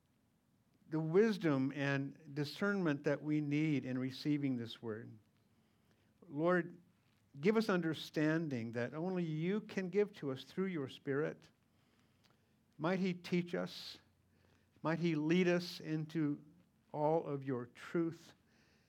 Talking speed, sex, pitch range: 120 wpm, male, 120-165 Hz